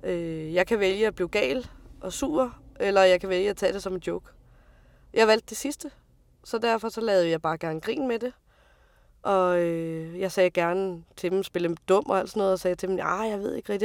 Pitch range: 165-215 Hz